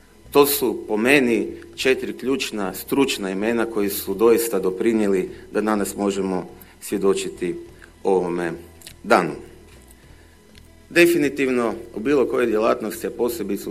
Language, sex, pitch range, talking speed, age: Croatian, male, 95-125 Hz, 110 wpm, 40-59